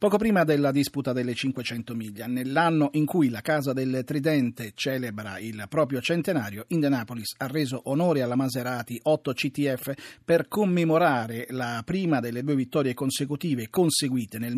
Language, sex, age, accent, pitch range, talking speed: Italian, male, 40-59, native, 130-160 Hz, 150 wpm